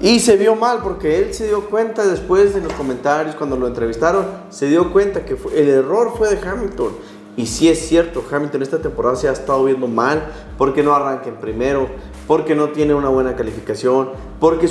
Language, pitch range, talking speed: Spanish, 135-175 Hz, 210 wpm